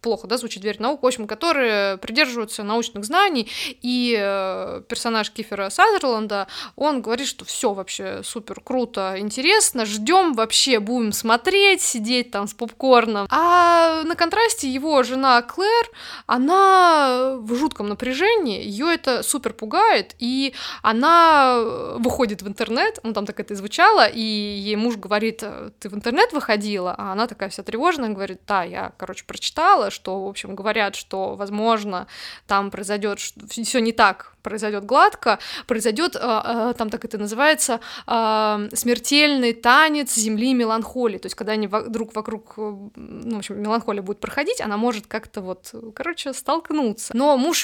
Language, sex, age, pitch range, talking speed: Russian, female, 20-39, 210-275 Hz, 145 wpm